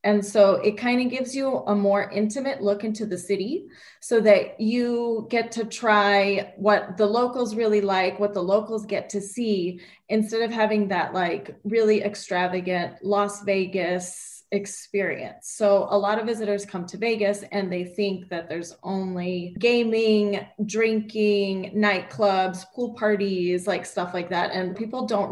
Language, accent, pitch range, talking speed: English, American, 190-220 Hz, 160 wpm